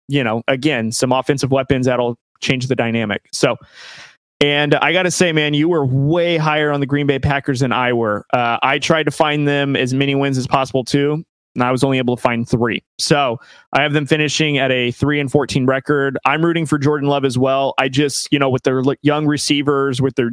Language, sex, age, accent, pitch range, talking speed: English, male, 20-39, American, 125-145 Hz, 225 wpm